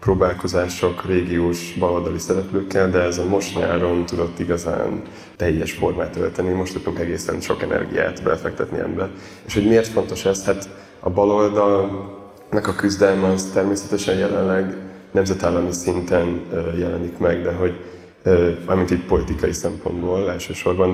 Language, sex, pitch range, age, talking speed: Hungarian, male, 90-100 Hz, 20-39, 130 wpm